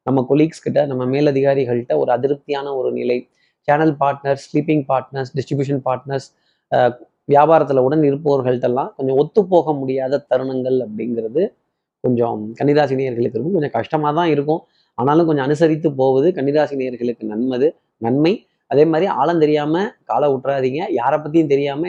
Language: Tamil